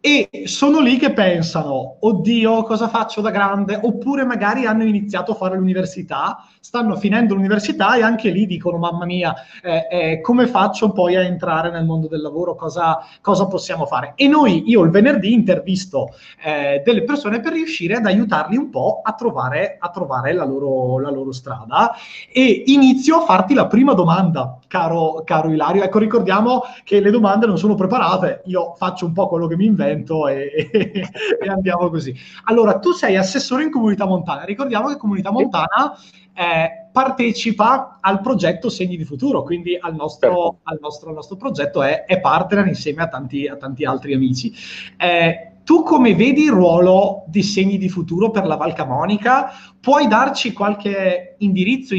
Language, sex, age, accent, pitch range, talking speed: Italian, male, 30-49, native, 165-225 Hz, 170 wpm